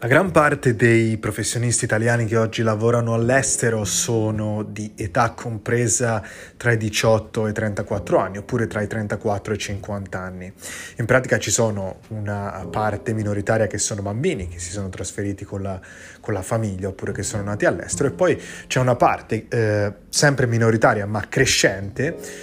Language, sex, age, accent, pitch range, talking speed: Italian, male, 20-39, native, 105-120 Hz, 170 wpm